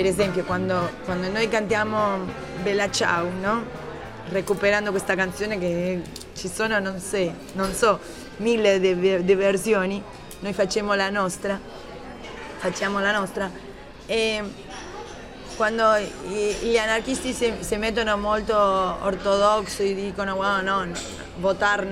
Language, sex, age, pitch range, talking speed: Italian, female, 20-39, 190-220 Hz, 120 wpm